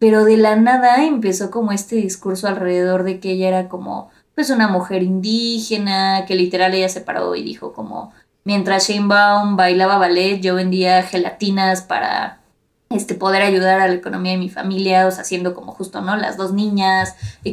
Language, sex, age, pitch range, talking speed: Spanish, female, 20-39, 185-210 Hz, 185 wpm